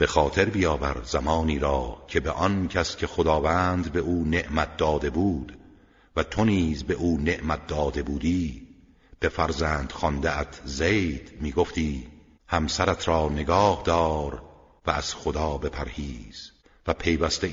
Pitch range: 75-85 Hz